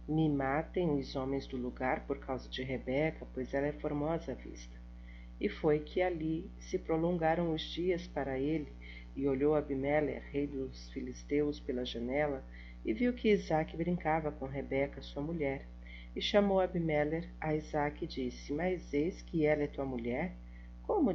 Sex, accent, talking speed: female, Brazilian, 165 wpm